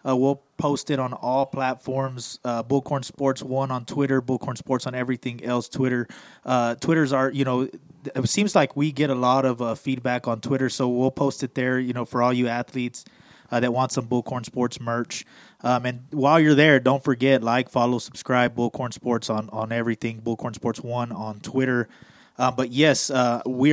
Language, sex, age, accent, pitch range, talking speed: English, male, 20-39, American, 120-135 Hz, 200 wpm